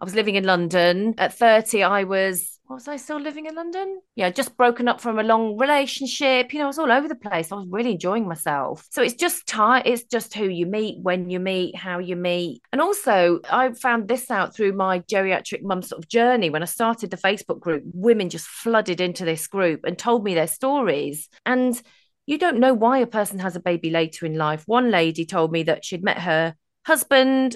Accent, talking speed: British, 225 wpm